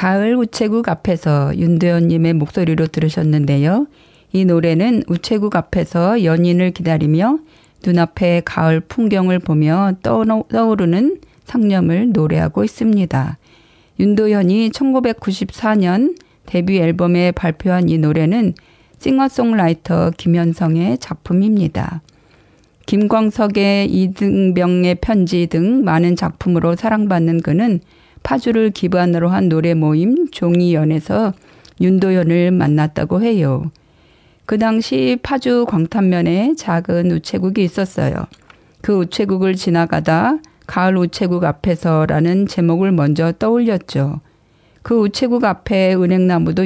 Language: Korean